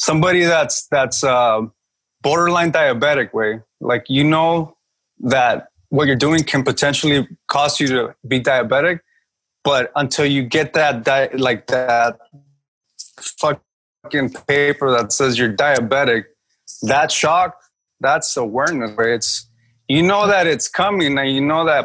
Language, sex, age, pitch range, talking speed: English, male, 20-39, 125-165 Hz, 135 wpm